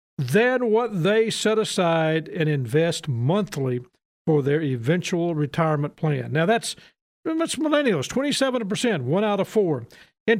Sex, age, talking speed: male, 50-69, 135 wpm